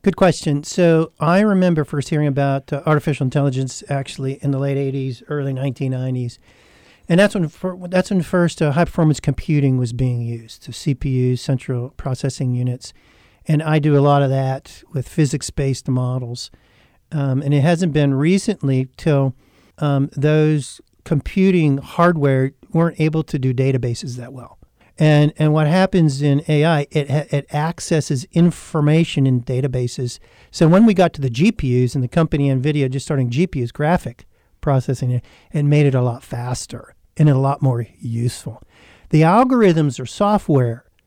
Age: 40-59